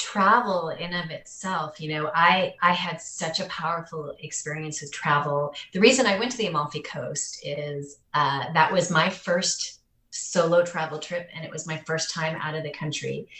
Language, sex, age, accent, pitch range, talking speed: English, female, 30-49, American, 155-185 Hz, 195 wpm